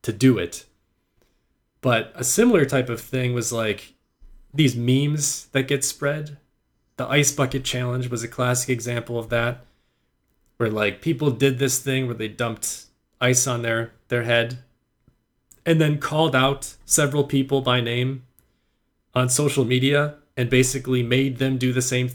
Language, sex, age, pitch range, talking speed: English, male, 30-49, 120-145 Hz, 155 wpm